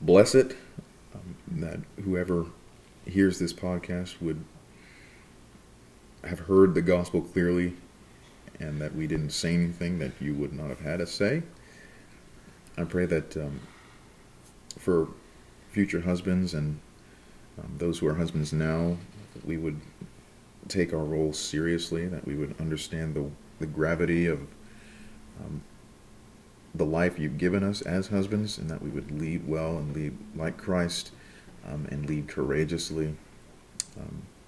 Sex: male